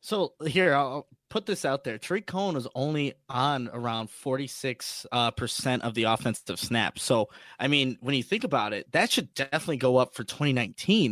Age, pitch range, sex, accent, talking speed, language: 20-39, 125-165 Hz, male, American, 185 wpm, English